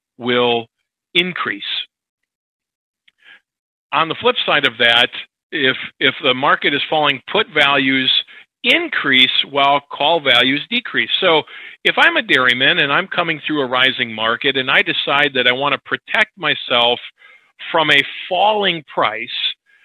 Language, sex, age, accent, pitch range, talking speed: English, male, 40-59, American, 130-185 Hz, 140 wpm